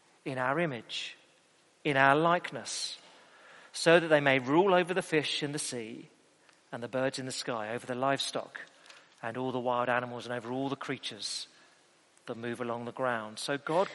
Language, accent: English, British